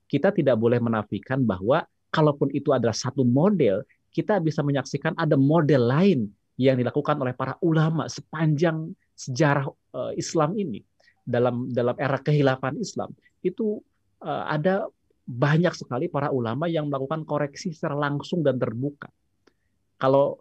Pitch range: 110-150 Hz